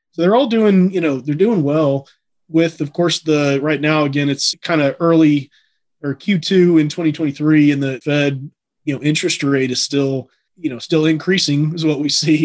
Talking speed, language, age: 200 wpm, English, 30-49